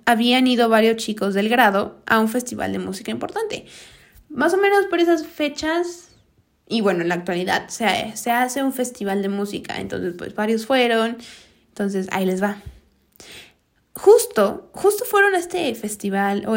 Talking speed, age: 165 wpm, 20-39